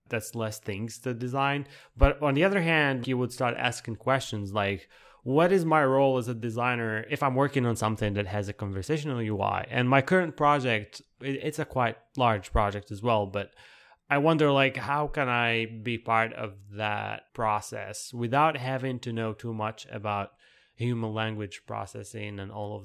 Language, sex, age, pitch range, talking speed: English, male, 20-39, 110-140 Hz, 180 wpm